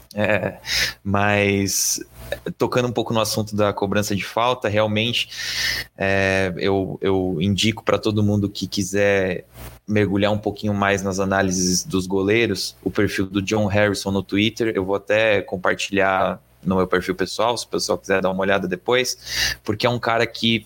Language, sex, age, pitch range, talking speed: Portuguese, male, 20-39, 100-115 Hz, 165 wpm